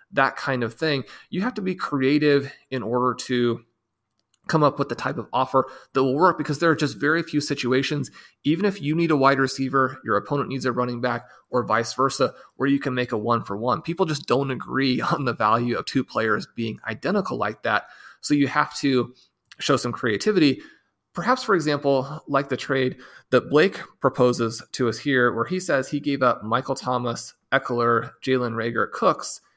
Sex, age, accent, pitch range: male, 30-49, American, 120-145 Hz